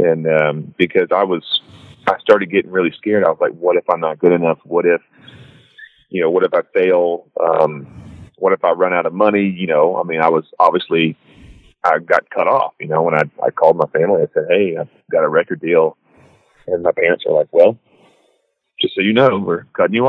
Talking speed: 225 wpm